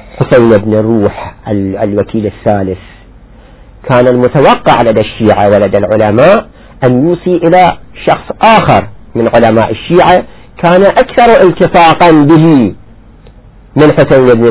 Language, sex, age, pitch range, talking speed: Arabic, male, 40-59, 105-125 Hz, 110 wpm